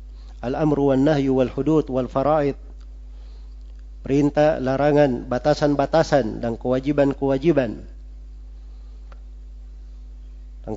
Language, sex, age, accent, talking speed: Indonesian, male, 40-59, native, 55 wpm